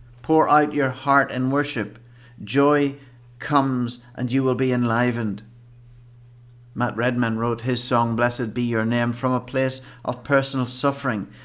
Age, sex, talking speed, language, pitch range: 60-79, male, 145 wpm, English, 120-140 Hz